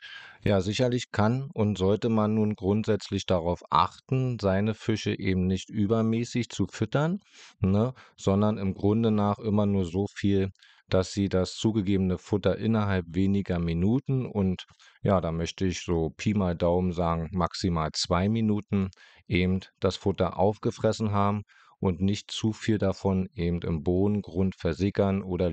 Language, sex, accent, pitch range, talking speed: German, male, German, 90-105 Hz, 145 wpm